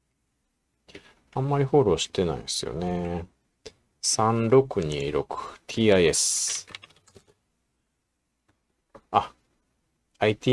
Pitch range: 100-150 Hz